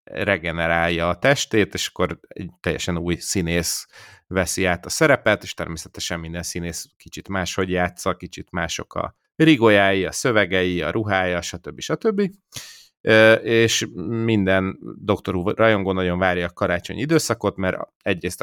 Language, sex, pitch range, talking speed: Hungarian, male, 85-105 Hz, 135 wpm